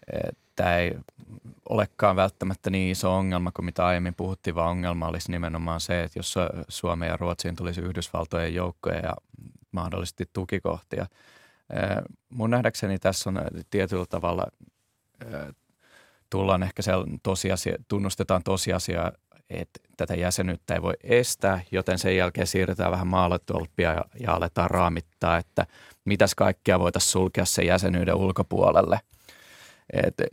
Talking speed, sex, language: 125 wpm, male, Finnish